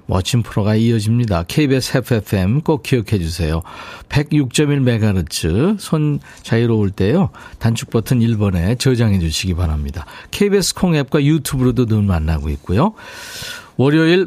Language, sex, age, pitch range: Korean, male, 40-59, 110-155 Hz